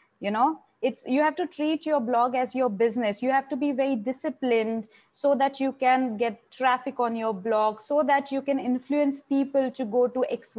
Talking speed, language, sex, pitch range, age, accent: 210 wpm, Hindi, female, 225-270 Hz, 20-39, native